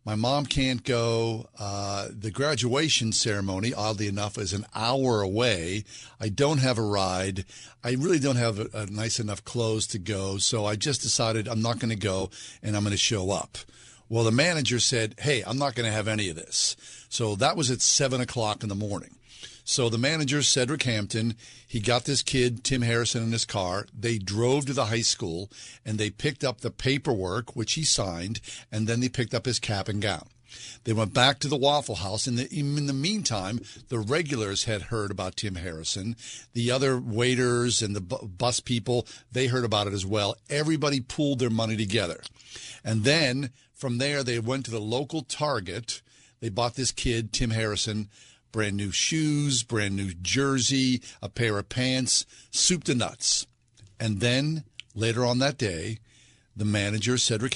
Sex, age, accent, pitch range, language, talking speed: male, 50-69, American, 110-130 Hz, English, 190 wpm